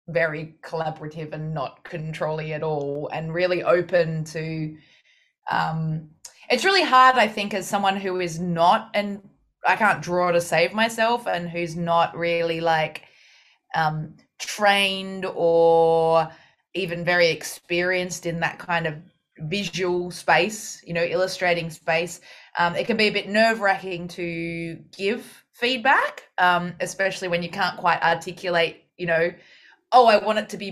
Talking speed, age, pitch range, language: 145 wpm, 20-39, 165-205 Hz, English